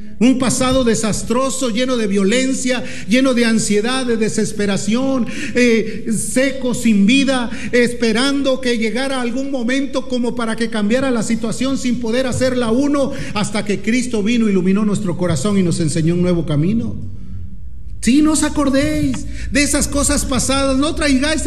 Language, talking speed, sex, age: Spanish, 150 wpm, male, 40-59